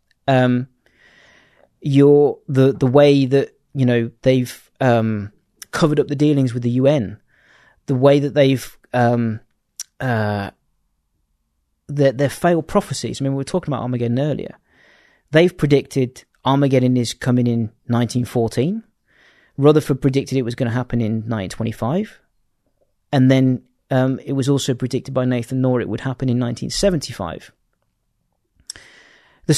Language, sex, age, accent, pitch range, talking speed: English, male, 30-49, British, 120-150 Hz, 145 wpm